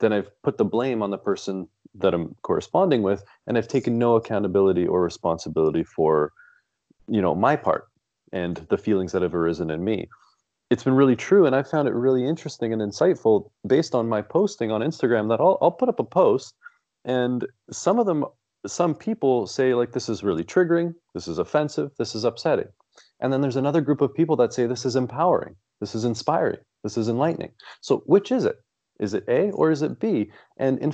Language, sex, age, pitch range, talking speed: English, male, 30-49, 100-150 Hz, 205 wpm